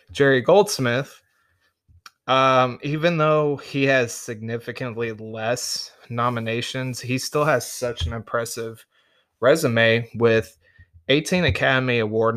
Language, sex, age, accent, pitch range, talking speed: English, male, 20-39, American, 115-135 Hz, 100 wpm